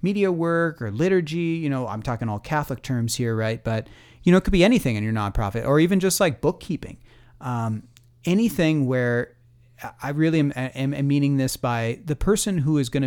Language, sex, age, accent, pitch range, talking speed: English, male, 40-59, American, 115-150 Hz, 200 wpm